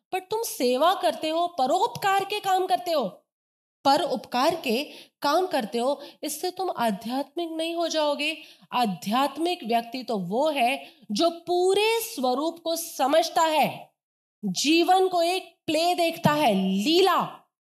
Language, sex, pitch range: Hindi, female, 240-345 Hz